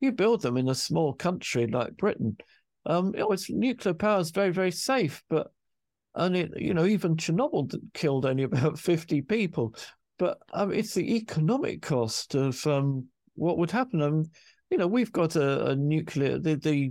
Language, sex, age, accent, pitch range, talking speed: English, male, 50-69, British, 135-185 Hz, 180 wpm